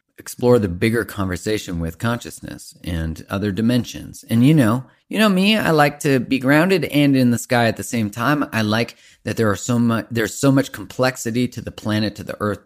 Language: English